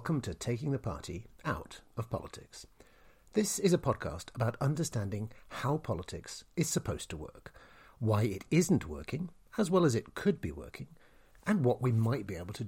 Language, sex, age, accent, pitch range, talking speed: English, male, 50-69, British, 105-155 Hz, 180 wpm